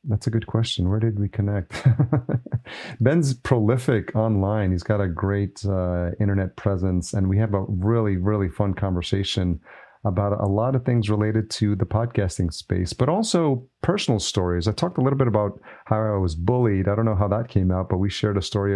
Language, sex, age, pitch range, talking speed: English, male, 40-59, 95-115 Hz, 200 wpm